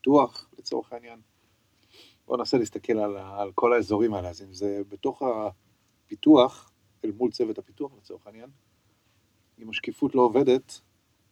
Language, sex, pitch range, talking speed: Hebrew, male, 100-120 Hz, 140 wpm